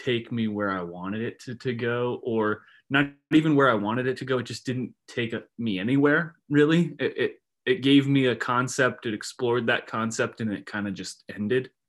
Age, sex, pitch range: 20-39, male, 110-130 Hz